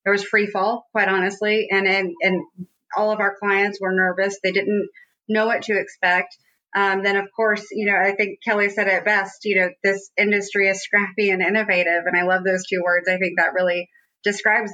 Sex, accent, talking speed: female, American, 210 wpm